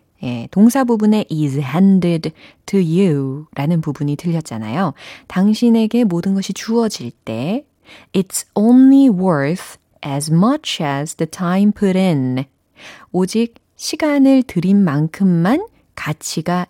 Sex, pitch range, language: female, 150-215 Hz, Korean